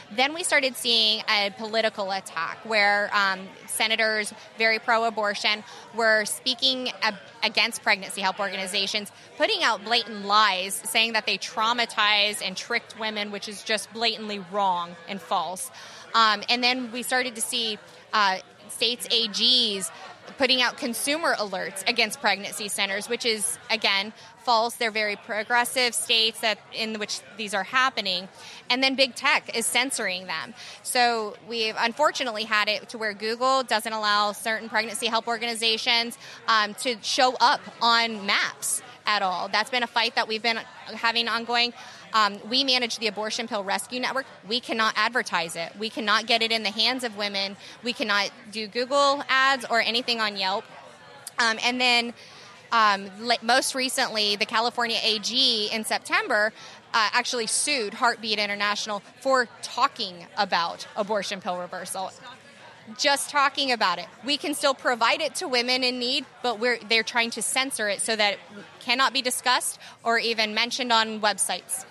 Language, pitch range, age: English, 210-245 Hz, 20-39